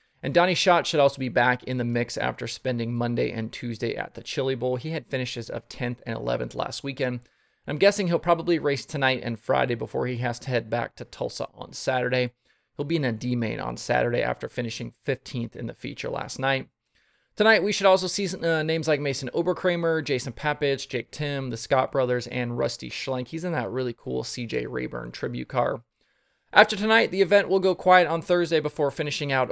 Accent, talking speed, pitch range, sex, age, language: American, 205 wpm, 125-160 Hz, male, 30-49, English